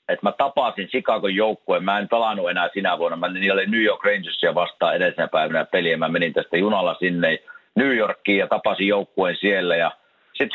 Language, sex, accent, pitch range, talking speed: Finnish, male, native, 110-150 Hz, 190 wpm